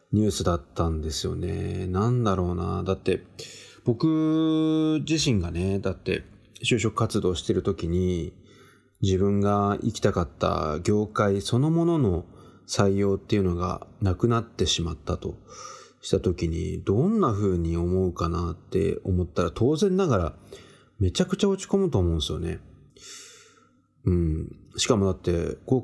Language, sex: Japanese, male